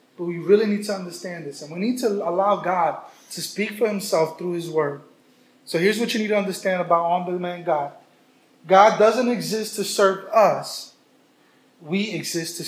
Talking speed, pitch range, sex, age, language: 195 wpm, 175-220 Hz, male, 20-39, English